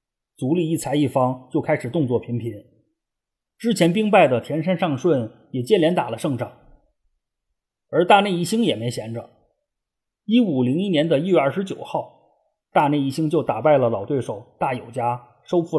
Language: Chinese